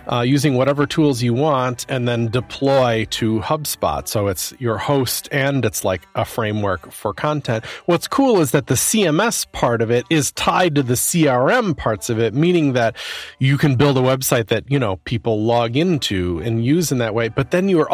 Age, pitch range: 40-59, 110-150 Hz